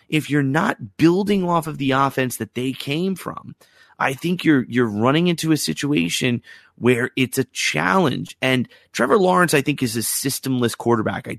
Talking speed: 180 wpm